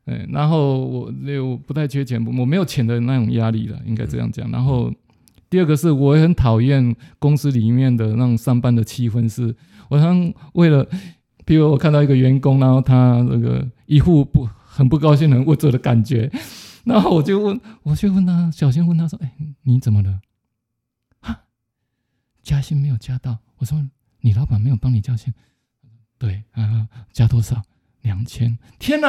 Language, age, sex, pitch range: Chinese, 20-39, male, 125-180 Hz